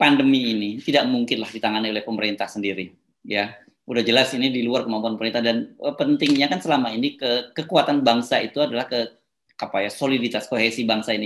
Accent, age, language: native, 20-39, Indonesian